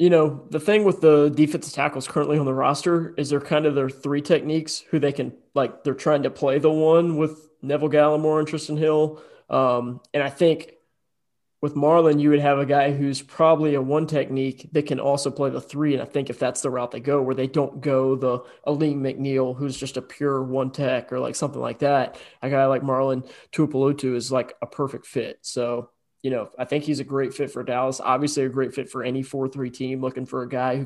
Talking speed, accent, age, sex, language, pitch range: 230 wpm, American, 20-39, male, English, 130-145 Hz